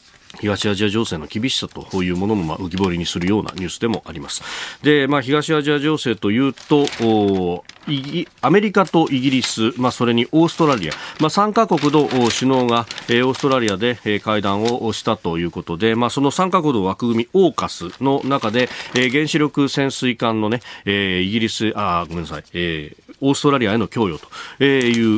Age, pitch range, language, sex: 40-59, 105-145 Hz, Japanese, male